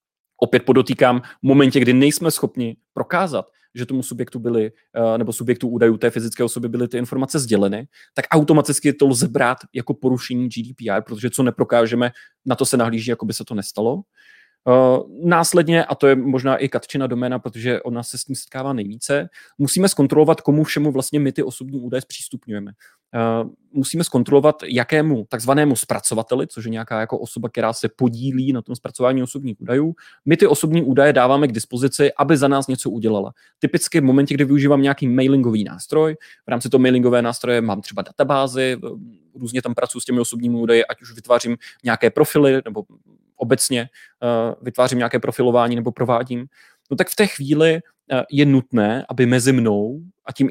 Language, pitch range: Czech, 120-140 Hz